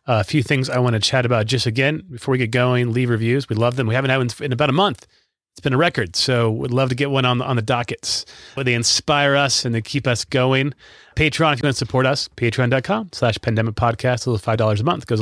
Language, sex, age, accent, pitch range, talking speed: English, male, 30-49, American, 115-140 Hz, 260 wpm